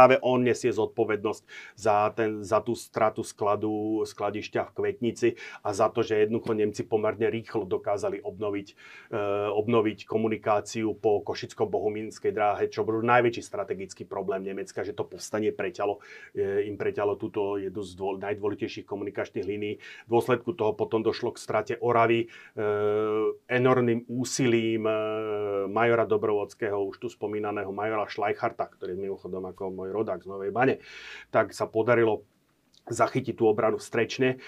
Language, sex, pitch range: Slovak, male, 110-130 Hz